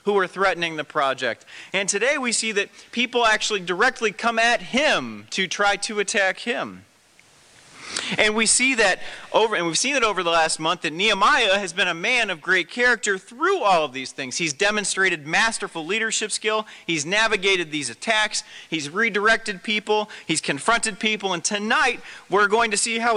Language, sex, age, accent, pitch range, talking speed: English, male, 40-59, American, 165-220 Hz, 180 wpm